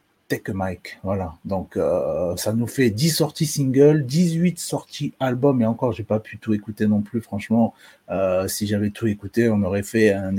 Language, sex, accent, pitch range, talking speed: French, male, French, 110-140 Hz, 190 wpm